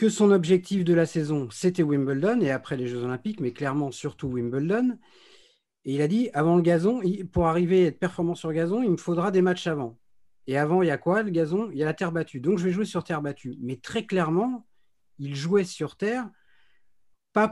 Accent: French